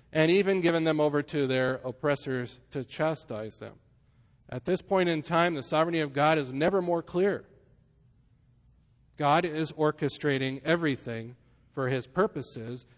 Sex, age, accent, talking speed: male, 40-59, American, 145 wpm